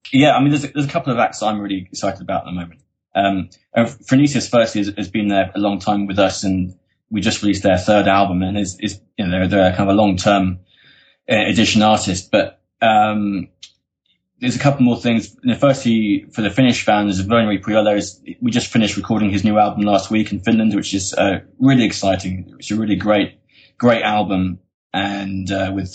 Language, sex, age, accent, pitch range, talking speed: English, male, 20-39, British, 100-110 Hz, 205 wpm